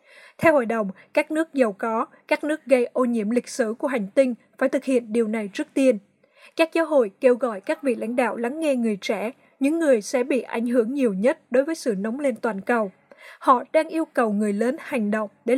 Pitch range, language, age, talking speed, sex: 230-275 Hz, Vietnamese, 20-39, 235 wpm, female